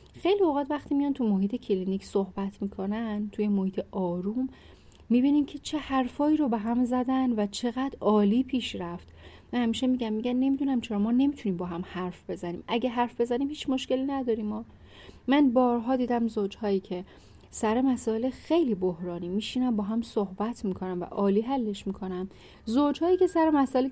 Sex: female